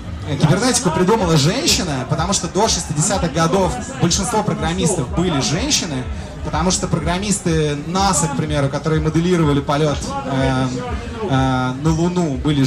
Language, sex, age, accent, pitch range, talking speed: Russian, male, 20-39, native, 155-195 Hz, 125 wpm